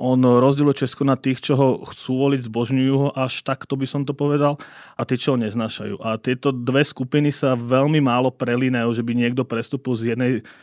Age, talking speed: 30-49, 205 wpm